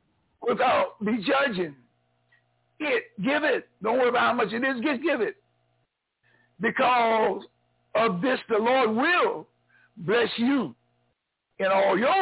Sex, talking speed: male, 135 wpm